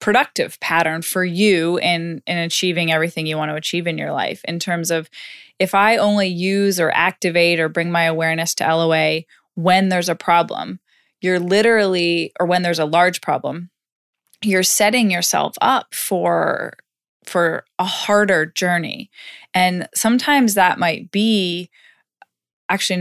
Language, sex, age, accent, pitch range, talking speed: English, female, 20-39, American, 170-190 Hz, 150 wpm